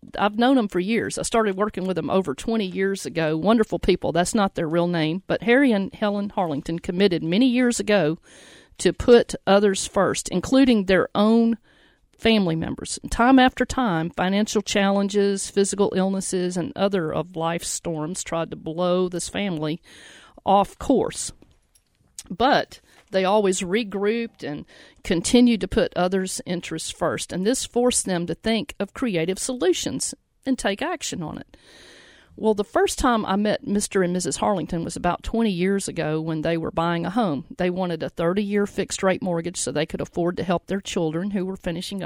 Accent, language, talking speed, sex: American, English, 175 wpm, female